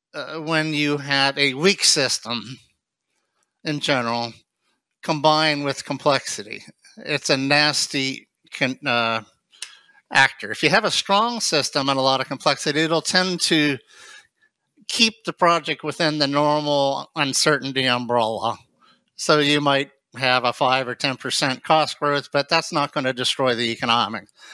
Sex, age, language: male, 50-69, Portuguese